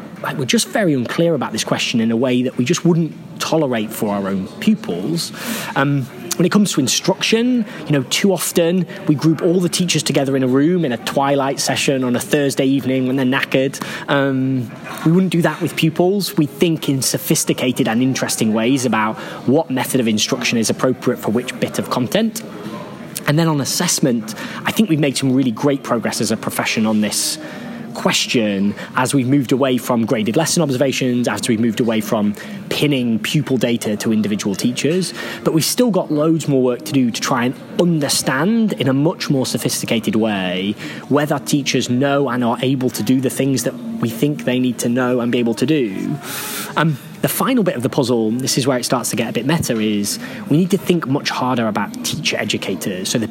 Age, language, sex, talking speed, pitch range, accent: 20-39, English, male, 205 wpm, 125-165 Hz, British